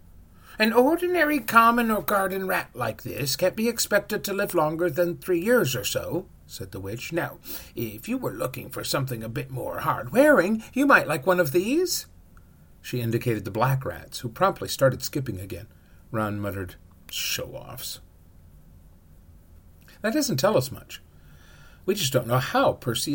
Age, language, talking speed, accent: 50-69, English, 165 wpm, American